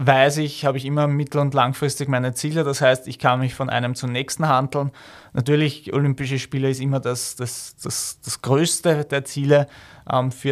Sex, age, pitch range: male, 20-39, 130-150 Hz